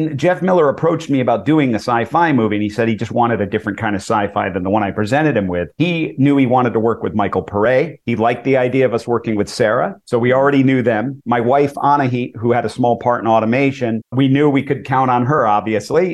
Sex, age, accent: male, 50-69, American